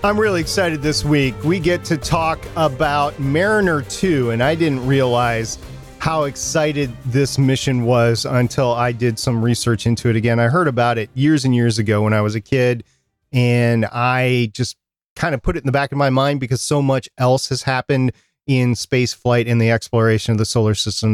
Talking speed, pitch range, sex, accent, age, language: 200 wpm, 115-145 Hz, male, American, 40-59, English